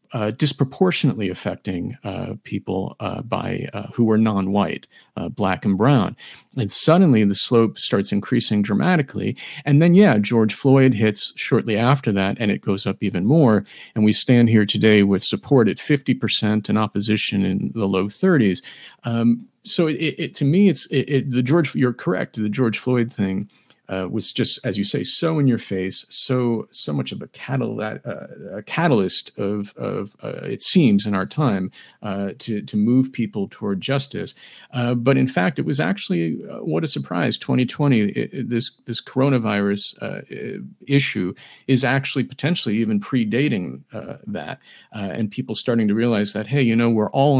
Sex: male